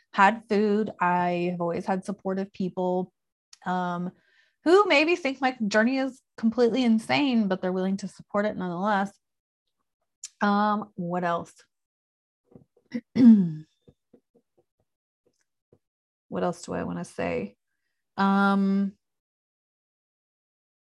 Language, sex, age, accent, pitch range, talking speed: English, female, 30-49, American, 180-220 Hz, 95 wpm